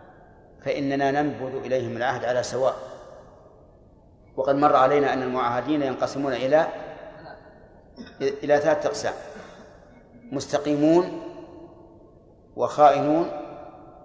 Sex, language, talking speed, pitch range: male, Arabic, 75 wpm, 135-155 Hz